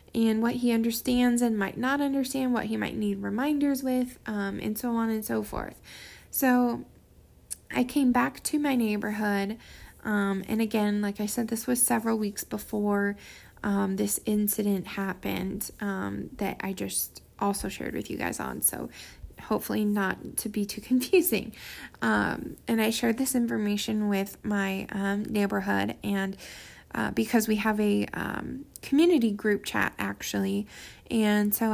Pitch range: 190-235 Hz